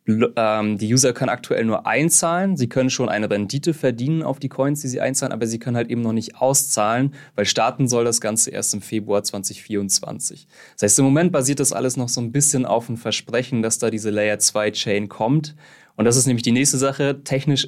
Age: 20-39